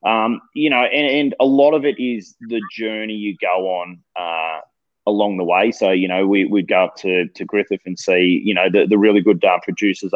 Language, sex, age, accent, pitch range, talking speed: English, male, 20-39, Australian, 95-110 Hz, 230 wpm